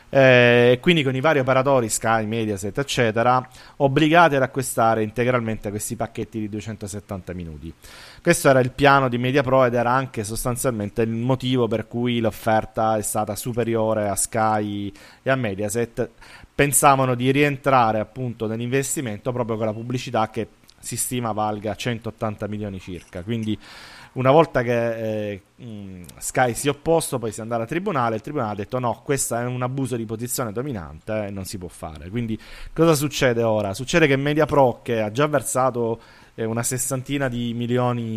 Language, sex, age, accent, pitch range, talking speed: Italian, male, 30-49, native, 110-130 Hz, 165 wpm